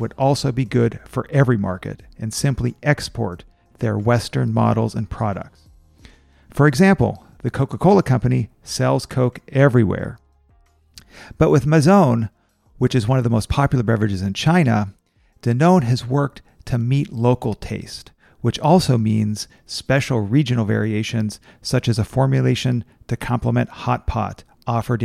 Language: English